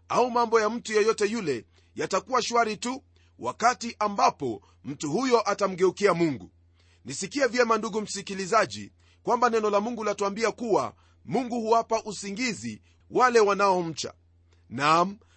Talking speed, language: 125 wpm, Swahili